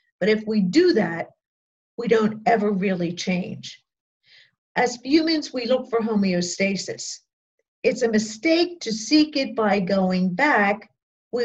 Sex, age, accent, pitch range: female, 50-69, American, 195-245 Hz